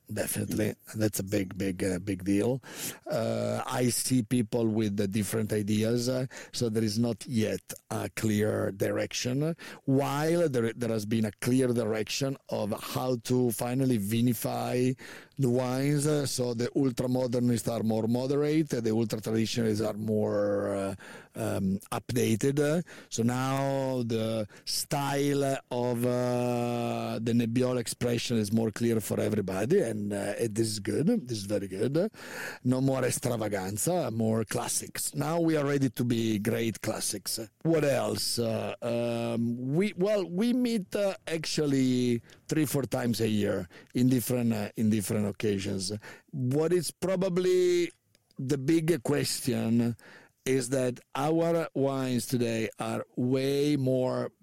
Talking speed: 140 wpm